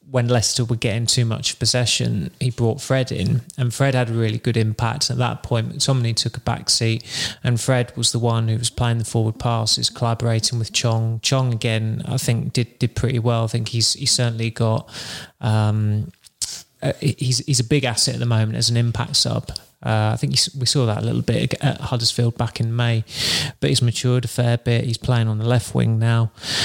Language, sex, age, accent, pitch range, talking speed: English, male, 20-39, British, 115-125 Hz, 215 wpm